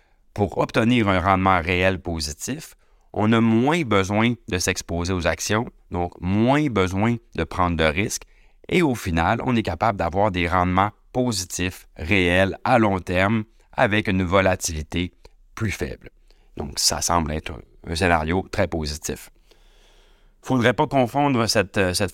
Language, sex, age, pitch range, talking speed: French, male, 30-49, 85-105 Hz, 150 wpm